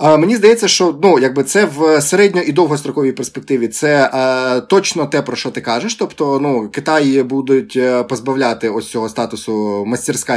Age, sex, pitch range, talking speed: 20-39, male, 130-165 Hz, 160 wpm